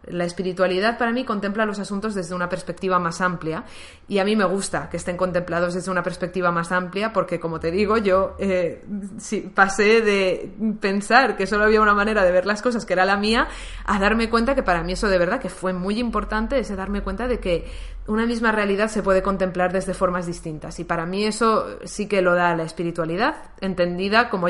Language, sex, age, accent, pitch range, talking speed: Spanish, female, 20-39, Spanish, 175-215 Hz, 210 wpm